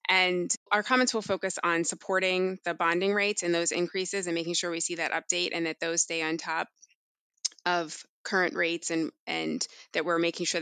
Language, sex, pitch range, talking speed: English, female, 165-190 Hz, 200 wpm